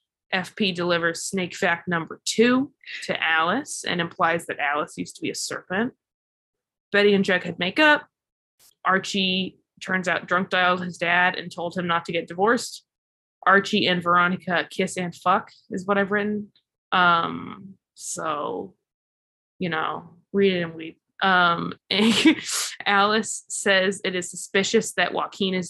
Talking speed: 145 wpm